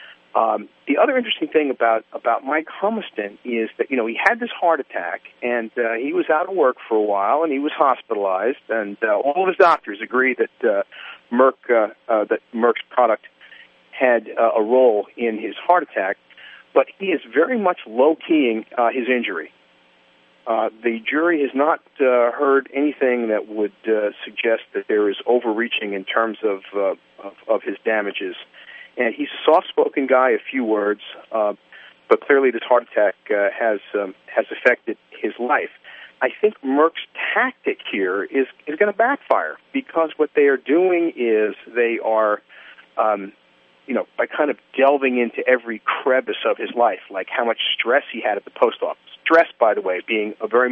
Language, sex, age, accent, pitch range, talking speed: English, male, 50-69, American, 110-165 Hz, 185 wpm